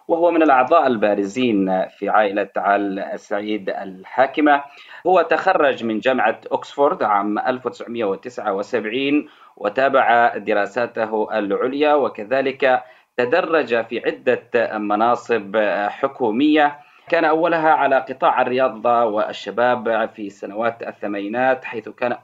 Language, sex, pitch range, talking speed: Arabic, male, 110-145 Hz, 95 wpm